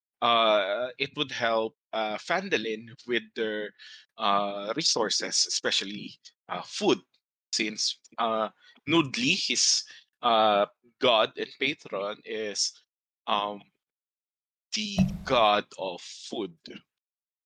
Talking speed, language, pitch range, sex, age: 95 wpm, English, 105-135 Hz, male, 20-39